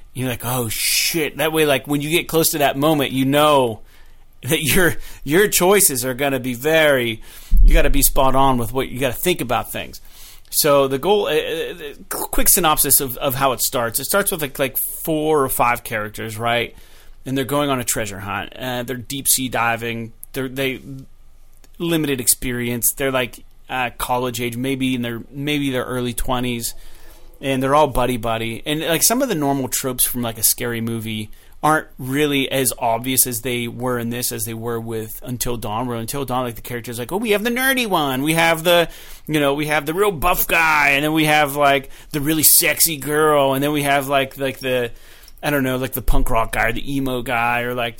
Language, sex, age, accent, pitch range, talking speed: English, male, 30-49, American, 120-150 Hz, 215 wpm